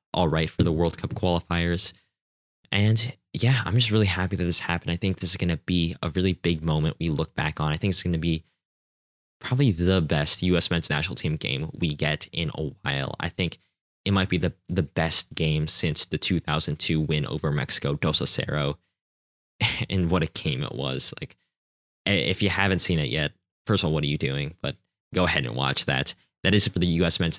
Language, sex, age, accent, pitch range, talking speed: English, male, 10-29, American, 85-105 Hz, 220 wpm